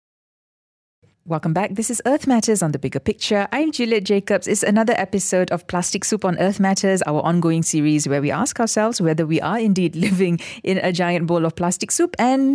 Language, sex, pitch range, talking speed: English, female, 155-200 Hz, 200 wpm